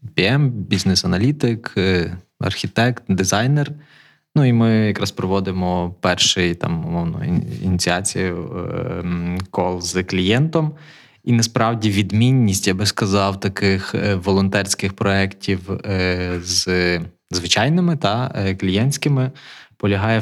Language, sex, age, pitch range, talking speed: Ukrainian, male, 20-39, 95-120 Hz, 85 wpm